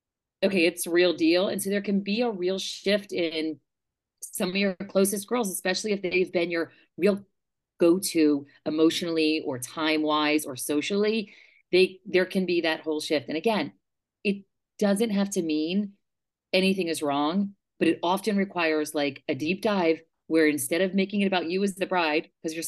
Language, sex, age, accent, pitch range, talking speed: English, female, 40-59, American, 160-205 Hz, 175 wpm